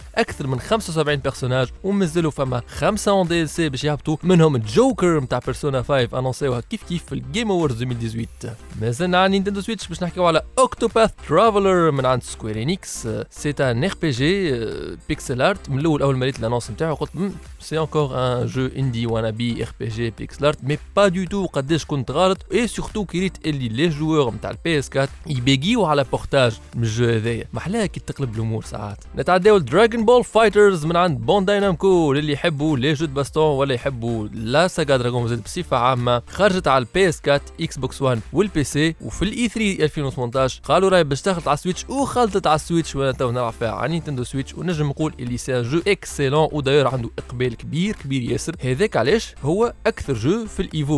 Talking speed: 155 wpm